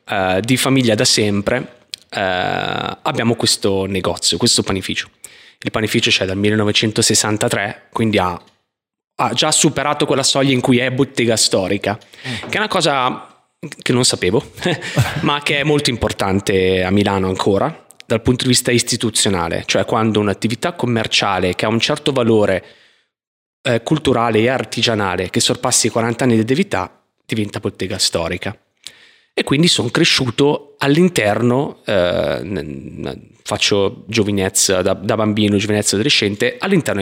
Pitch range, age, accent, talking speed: 100-130 Hz, 20-39, native, 135 wpm